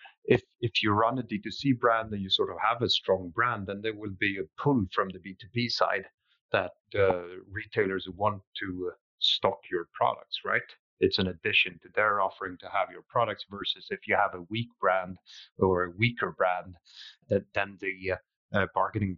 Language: English